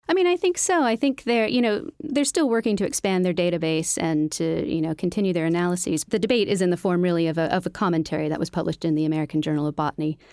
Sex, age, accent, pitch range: female, 40-59, American, 160-205 Hz